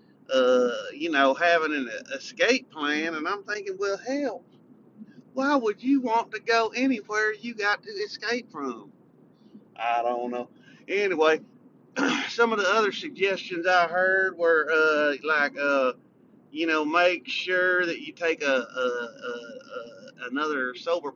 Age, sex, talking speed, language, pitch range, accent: 30-49, male, 145 wpm, English, 165-230 Hz, American